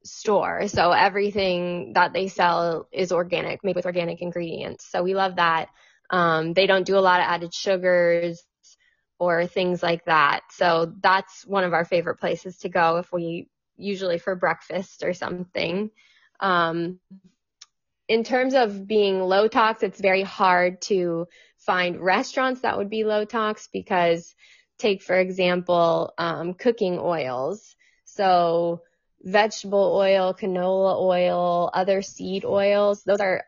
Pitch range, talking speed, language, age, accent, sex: 175-200 Hz, 140 wpm, English, 20-39, American, female